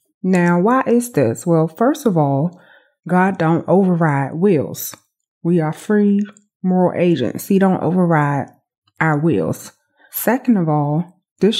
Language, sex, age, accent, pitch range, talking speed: English, female, 30-49, American, 165-200 Hz, 135 wpm